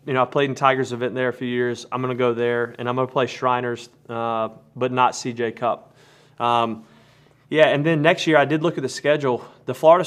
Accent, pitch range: American, 120-140 Hz